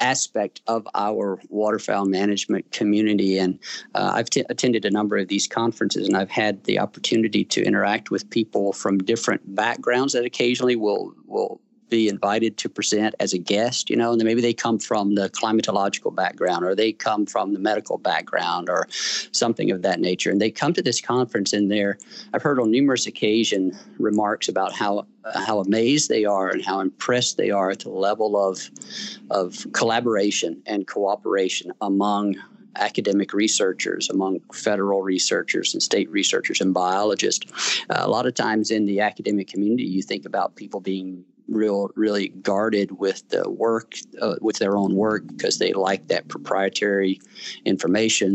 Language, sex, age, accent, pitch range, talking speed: English, male, 50-69, American, 100-115 Hz, 170 wpm